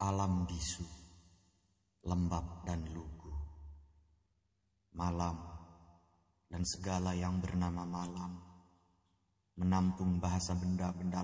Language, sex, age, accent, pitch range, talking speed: Indonesian, male, 30-49, native, 90-105 Hz, 75 wpm